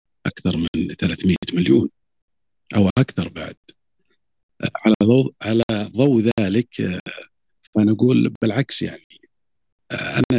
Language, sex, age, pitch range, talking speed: Arabic, male, 50-69, 95-115 Hz, 80 wpm